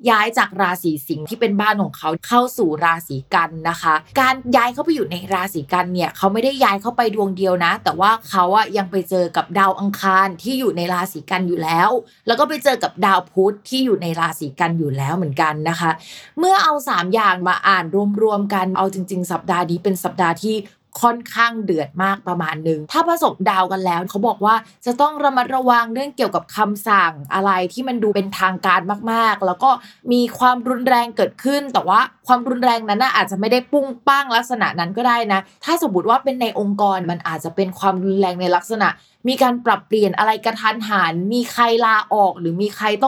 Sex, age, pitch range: female, 20-39, 180-245 Hz